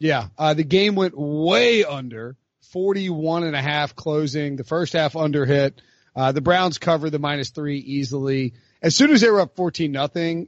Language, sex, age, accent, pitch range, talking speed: English, male, 30-49, American, 145-205 Hz, 190 wpm